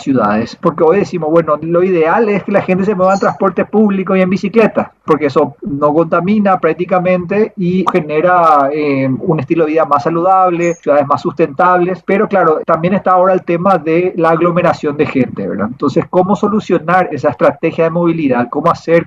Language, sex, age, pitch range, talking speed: Spanish, male, 40-59, 160-195 Hz, 185 wpm